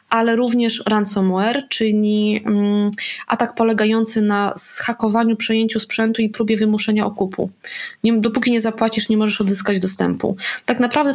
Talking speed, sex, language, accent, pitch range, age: 135 wpm, female, Polish, native, 200-235 Hz, 20-39